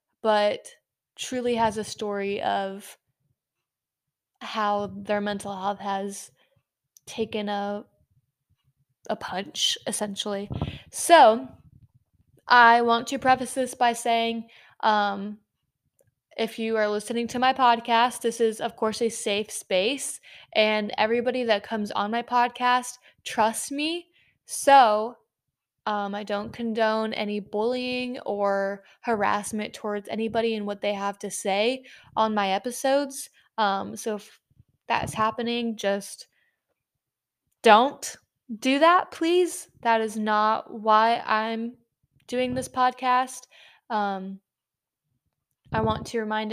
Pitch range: 205-240 Hz